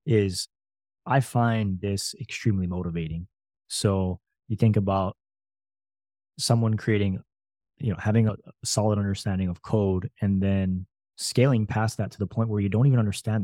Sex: male